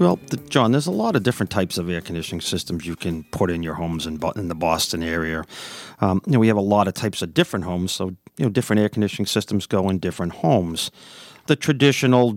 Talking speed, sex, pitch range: 235 wpm, male, 90-110 Hz